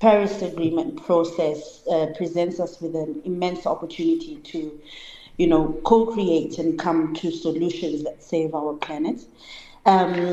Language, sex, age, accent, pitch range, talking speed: English, female, 30-49, South African, 160-190 Hz, 135 wpm